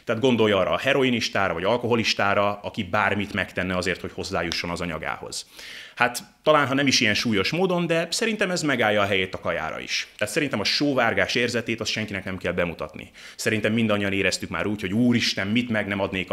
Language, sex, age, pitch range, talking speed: Hungarian, male, 30-49, 95-120 Hz, 195 wpm